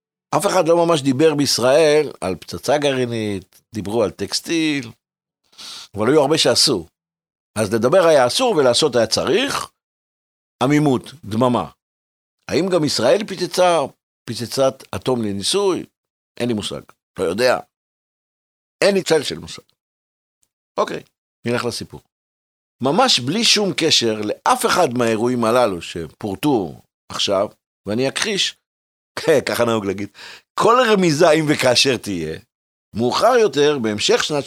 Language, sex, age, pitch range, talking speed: Hebrew, male, 60-79, 105-150 Hz, 120 wpm